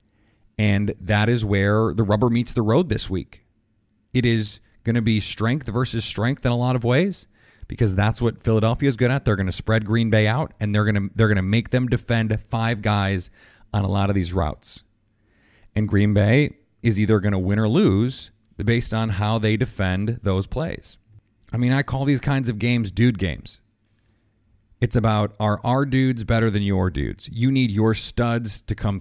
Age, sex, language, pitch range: 30-49, male, English, 100-120 Hz